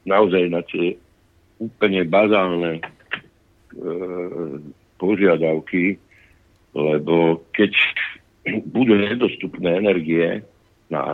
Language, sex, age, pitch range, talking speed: Slovak, male, 60-79, 75-95 Hz, 70 wpm